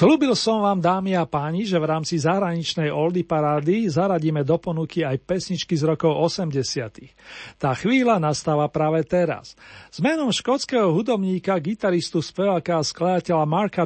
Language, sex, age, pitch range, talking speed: Slovak, male, 40-59, 150-180 Hz, 145 wpm